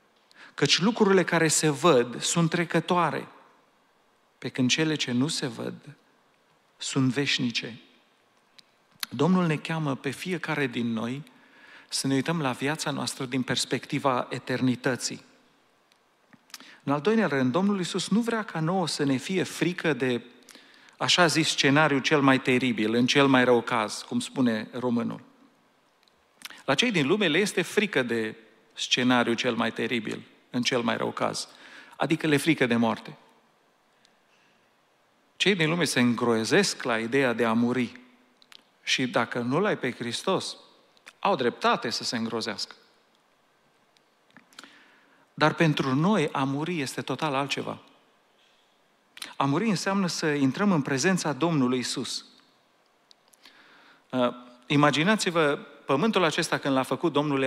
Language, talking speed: Romanian, 135 wpm